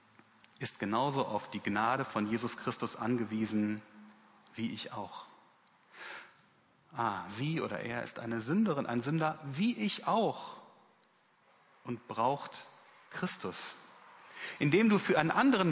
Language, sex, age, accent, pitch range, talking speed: German, male, 40-59, German, 115-165 Hz, 120 wpm